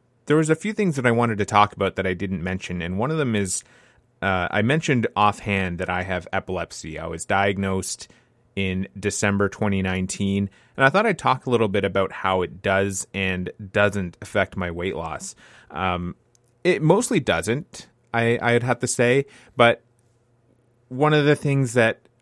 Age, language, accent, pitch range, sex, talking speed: 30-49, English, American, 95-120 Hz, male, 180 wpm